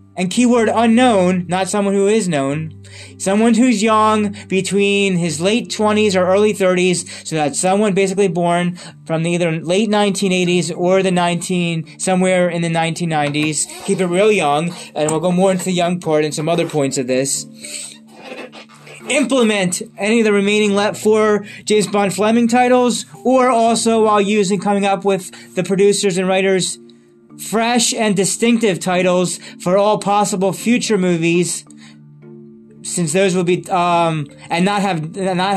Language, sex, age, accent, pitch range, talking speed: English, male, 20-39, American, 165-205 Hz, 155 wpm